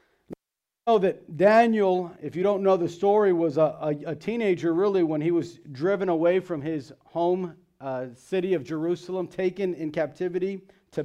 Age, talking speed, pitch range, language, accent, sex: 40-59, 170 wpm, 165-190 Hz, English, American, male